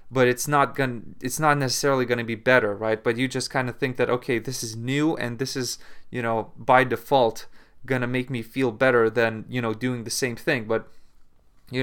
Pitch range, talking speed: 125-150 Hz, 220 wpm